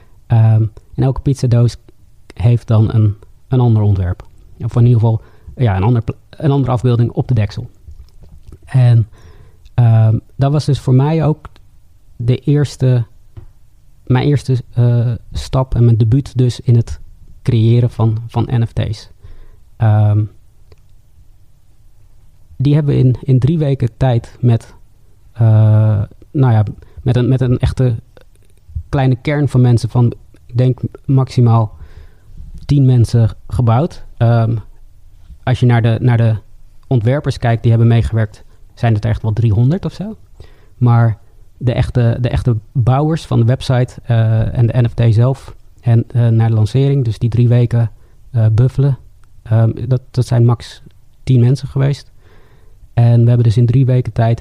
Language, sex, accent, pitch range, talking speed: Dutch, male, Dutch, 105-125 Hz, 150 wpm